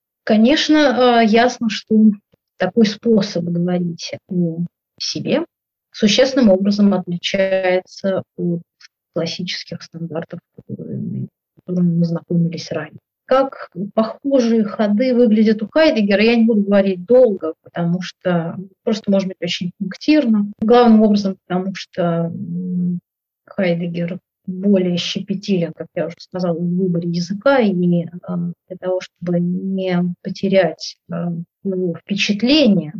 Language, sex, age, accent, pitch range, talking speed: Russian, female, 30-49, native, 175-205 Hz, 105 wpm